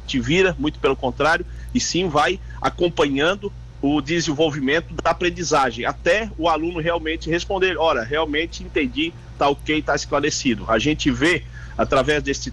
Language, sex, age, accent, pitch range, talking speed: Portuguese, male, 50-69, Brazilian, 125-160 Hz, 145 wpm